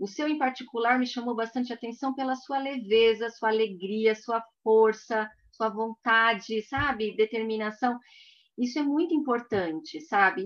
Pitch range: 200-255 Hz